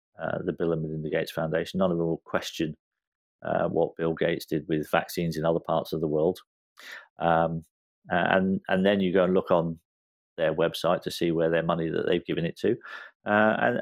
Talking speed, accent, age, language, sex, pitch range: 210 wpm, British, 40-59, English, male, 80-110 Hz